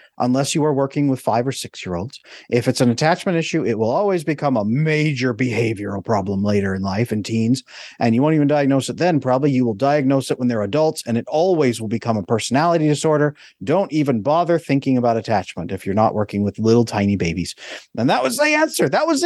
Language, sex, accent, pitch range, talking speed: English, male, American, 120-170 Hz, 225 wpm